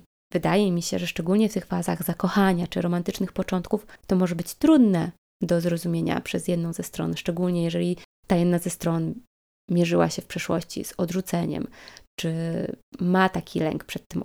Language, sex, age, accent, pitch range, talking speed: Polish, female, 20-39, native, 180-220 Hz, 170 wpm